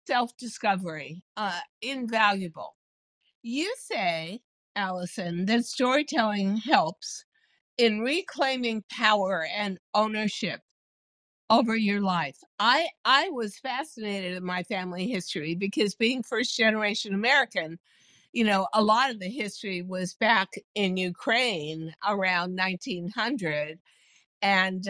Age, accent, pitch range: 60-79, American, 185-230 Hz